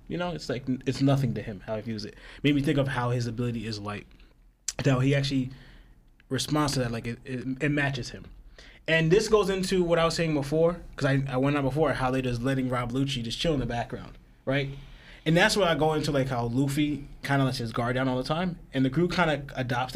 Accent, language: American, English